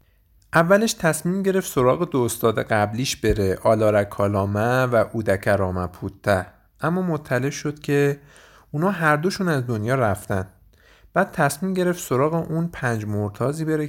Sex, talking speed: male, 130 wpm